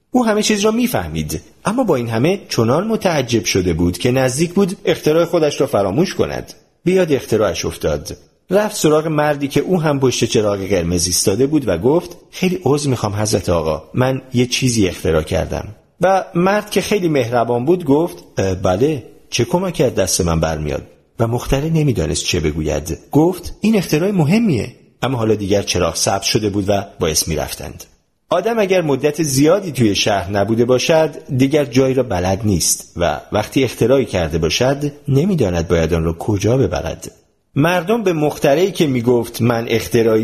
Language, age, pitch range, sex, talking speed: Persian, 40-59, 100-165 Hz, male, 165 wpm